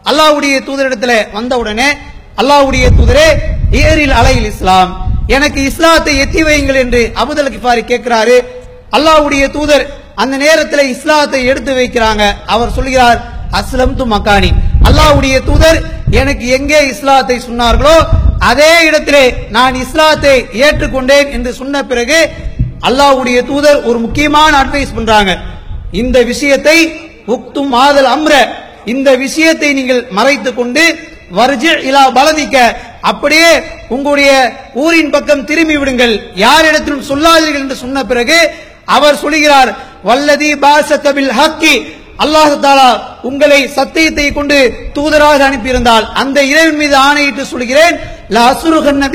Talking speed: 115 wpm